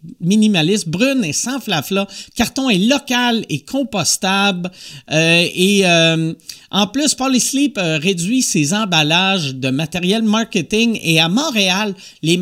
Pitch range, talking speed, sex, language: 170-235 Hz, 125 wpm, male, French